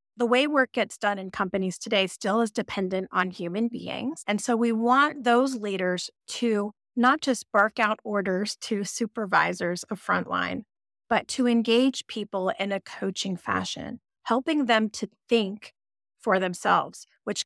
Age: 30-49